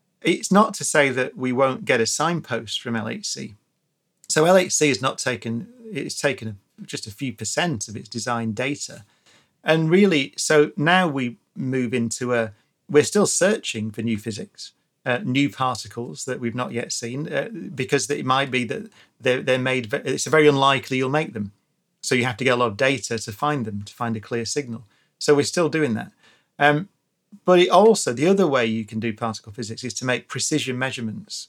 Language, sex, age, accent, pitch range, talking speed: English, male, 40-59, British, 115-150 Hz, 195 wpm